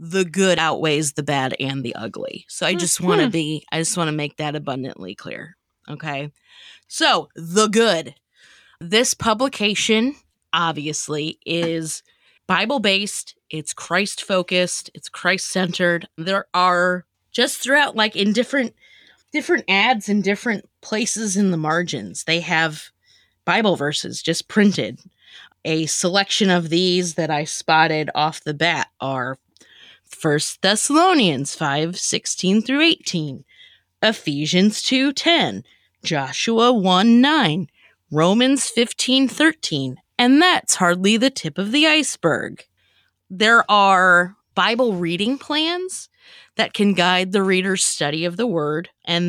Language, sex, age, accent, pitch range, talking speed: English, female, 20-39, American, 160-225 Hz, 130 wpm